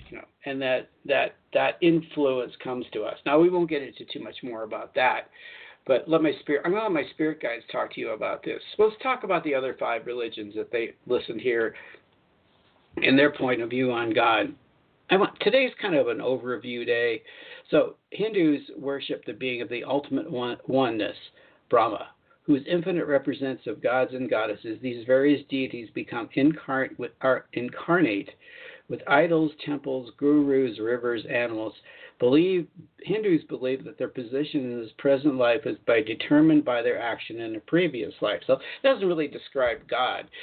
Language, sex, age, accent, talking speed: English, male, 50-69, American, 170 wpm